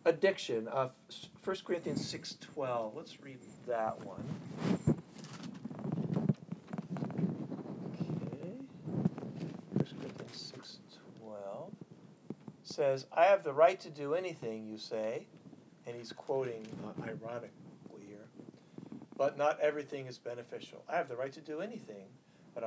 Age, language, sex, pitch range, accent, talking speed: 60-79, English, male, 120-155 Hz, American, 110 wpm